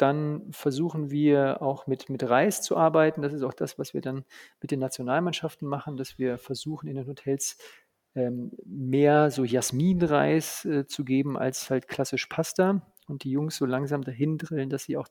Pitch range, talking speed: 135-155 Hz, 185 wpm